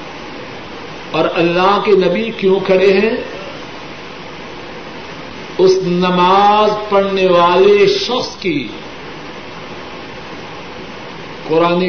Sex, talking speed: male, 70 wpm